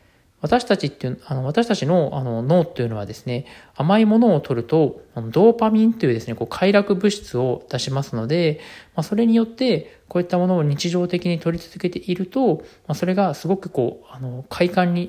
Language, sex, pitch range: Japanese, male, 130-180 Hz